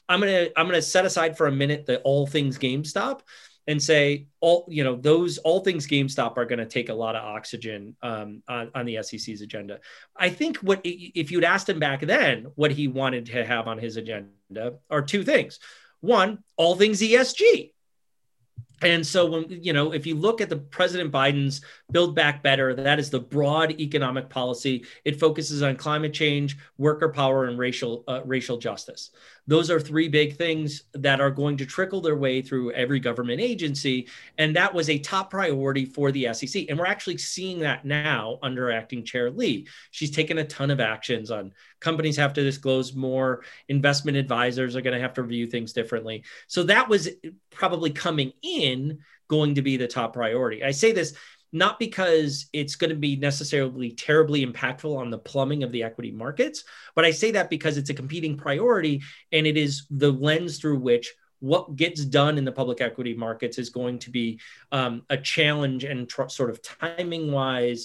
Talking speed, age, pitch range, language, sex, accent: 190 wpm, 30-49, 125-160 Hz, English, male, American